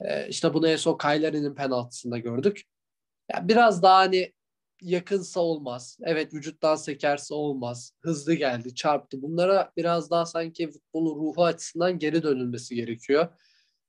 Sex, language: male, Turkish